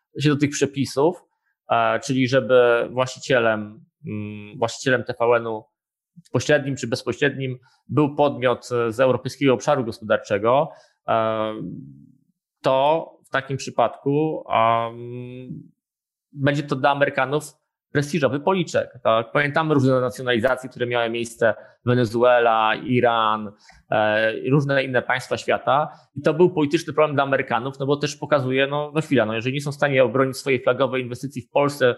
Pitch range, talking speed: 120-145 Hz, 130 wpm